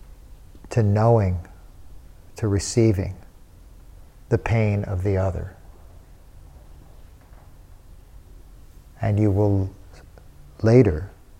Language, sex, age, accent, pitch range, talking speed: English, male, 50-69, American, 85-105 Hz, 70 wpm